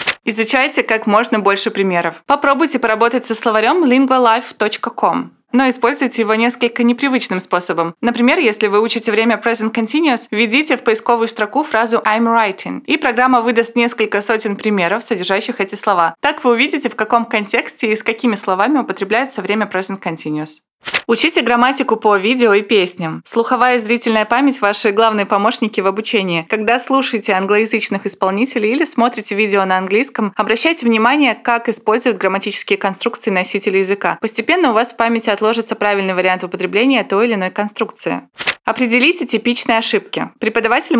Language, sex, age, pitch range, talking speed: Russian, female, 20-39, 205-245 Hz, 150 wpm